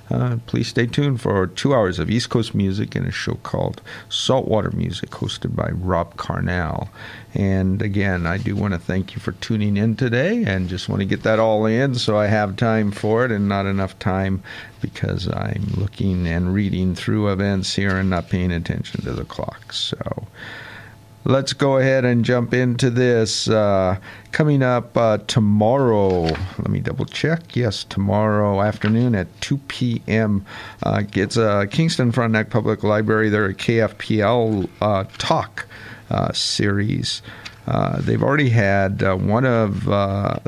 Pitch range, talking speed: 100-120 Hz, 165 wpm